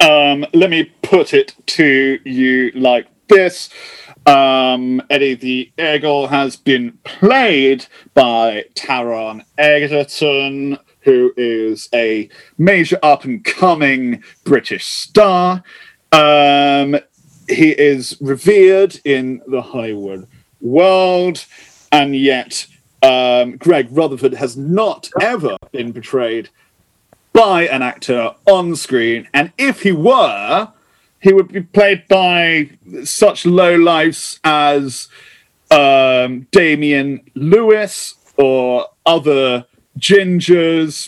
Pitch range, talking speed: 130-185 Hz, 100 wpm